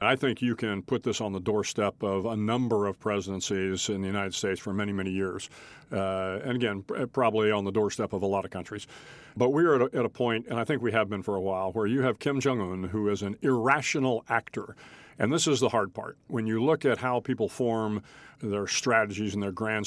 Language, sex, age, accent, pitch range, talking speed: English, male, 40-59, American, 105-135 Hz, 235 wpm